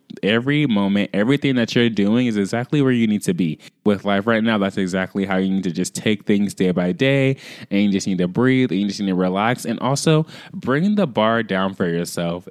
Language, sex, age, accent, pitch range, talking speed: English, male, 20-39, American, 95-130 Hz, 225 wpm